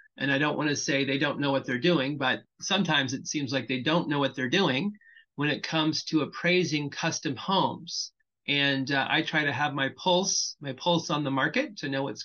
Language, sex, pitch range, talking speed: English, male, 135-170 Hz, 225 wpm